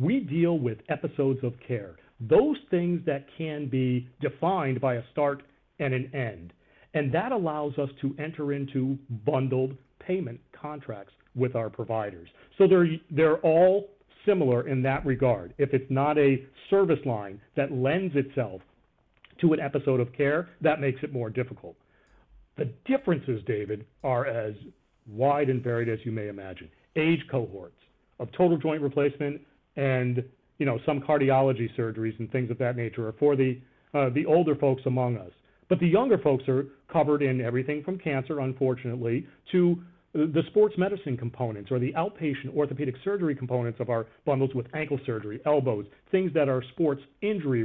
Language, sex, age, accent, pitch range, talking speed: English, male, 50-69, American, 120-150 Hz, 165 wpm